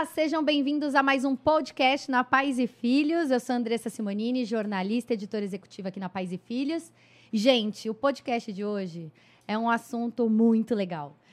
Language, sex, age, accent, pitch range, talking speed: Portuguese, female, 20-39, Brazilian, 215-280 Hz, 185 wpm